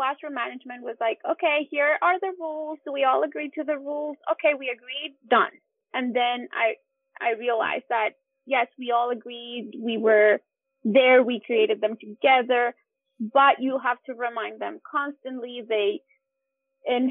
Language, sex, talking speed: English, female, 165 wpm